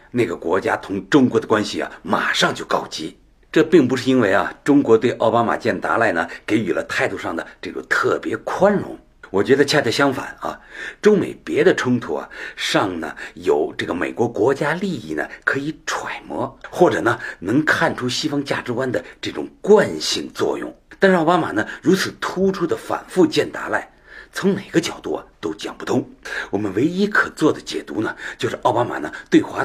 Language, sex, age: Chinese, male, 60-79